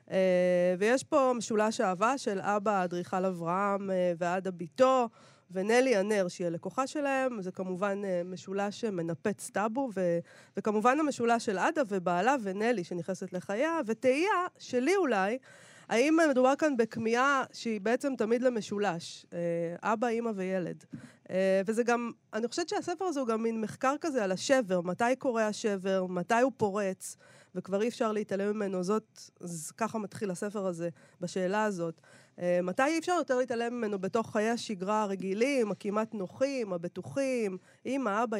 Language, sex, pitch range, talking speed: Hebrew, female, 185-245 Hz, 155 wpm